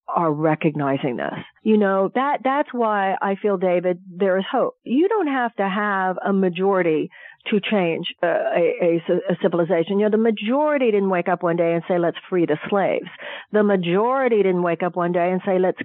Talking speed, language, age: 200 wpm, English, 40-59